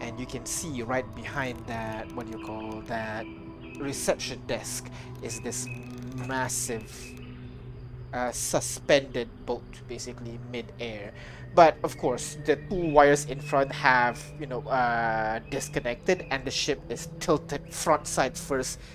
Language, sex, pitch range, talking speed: English, male, 115-130 Hz, 135 wpm